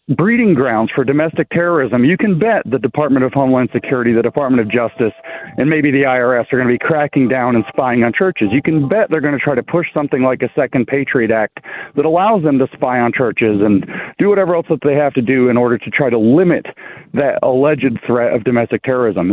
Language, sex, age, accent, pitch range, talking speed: English, male, 40-59, American, 120-155 Hz, 230 wpm